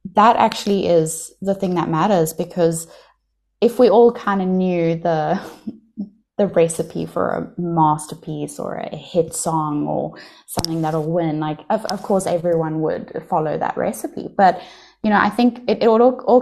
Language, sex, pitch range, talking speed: English, female, 165-210 Hz, 170 wpm